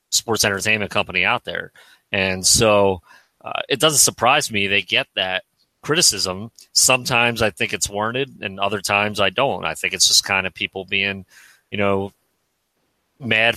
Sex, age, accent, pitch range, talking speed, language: male, 30-49, American, 95-115 Hz, 165 wpm, English